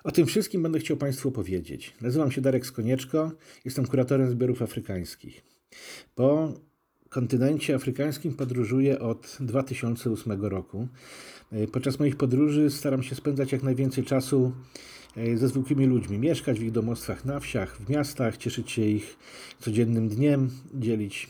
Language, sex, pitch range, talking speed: Polish, male, 120-145 Hz, 135 wpm